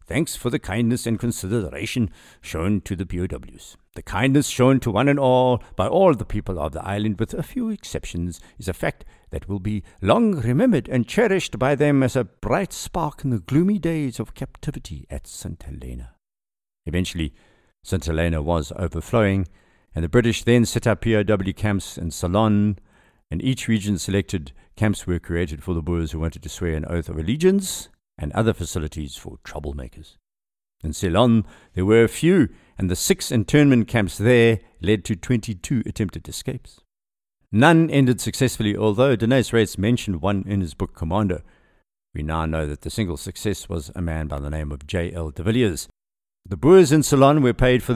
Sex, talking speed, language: male, 180 wpm, English